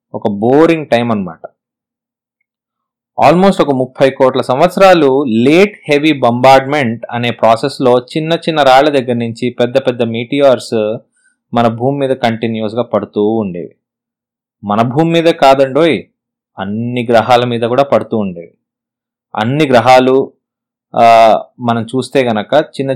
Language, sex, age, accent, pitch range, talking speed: English, male, 20-39, Indian, 115-155 Hz, 75 wpm